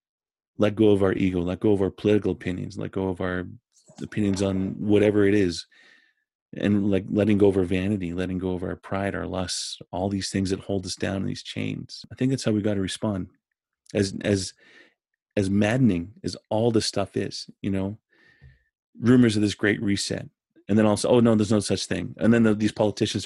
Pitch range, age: 95-110 Hz, 30-49